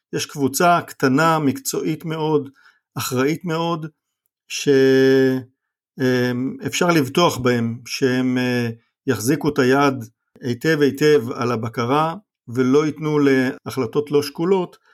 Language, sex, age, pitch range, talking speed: Hebrew, male, 50-69, 120-145 Hz, 90 wpm